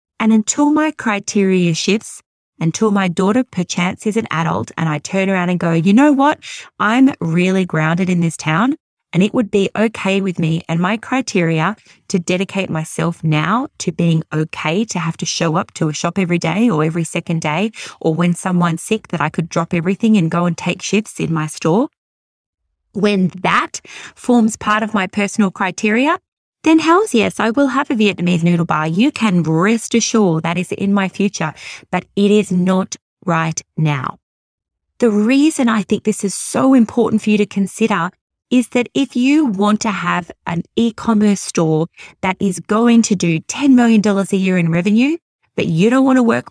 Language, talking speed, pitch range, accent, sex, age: English, 190 wpm, 170-220 Hz, Australian, female, 20-39